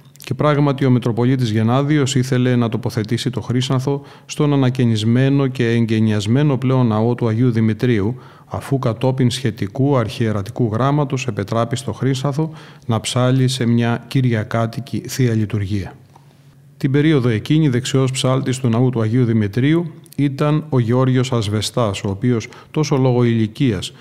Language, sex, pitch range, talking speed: Greek, male, 115-135 Hz, 130 wpm